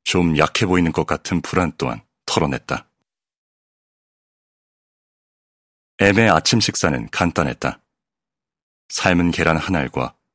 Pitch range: 80-105 Hz